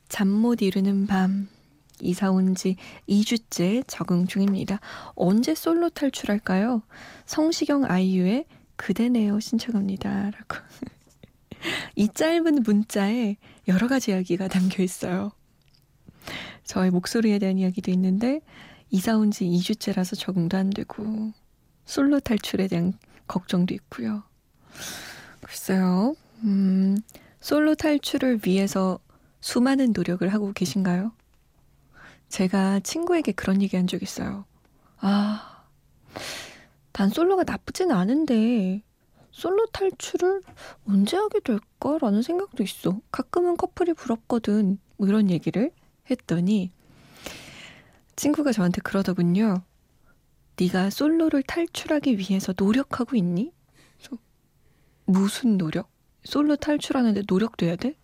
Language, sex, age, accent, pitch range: Korean, female, 20-39, native, 190-260 Hz